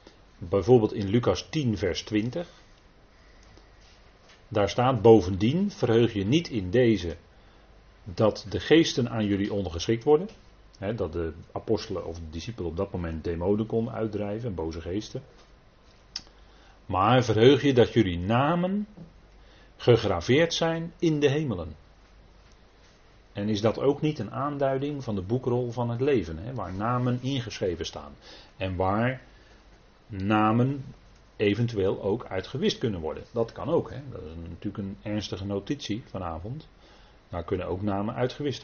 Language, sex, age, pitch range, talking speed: Dutch, male, 40-59, 95-125 Hz, 140 wpm